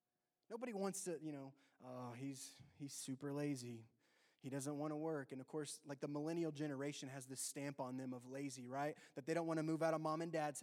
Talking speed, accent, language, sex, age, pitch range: 230 wpm, American, English, male, 20-39, 165-255 Hz